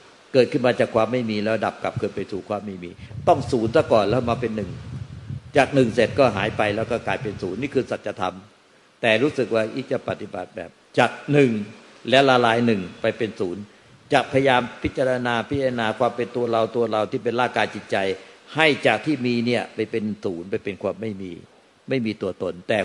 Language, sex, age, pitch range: Thai, male, 60-79, 105-125 Hz